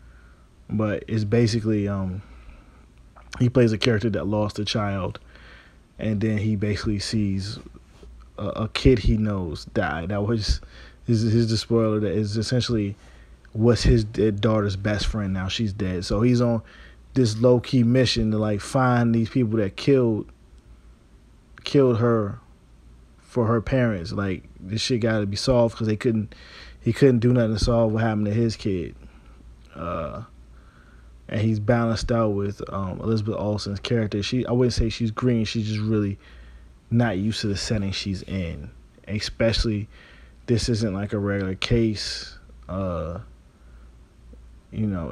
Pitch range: 90-115 Hz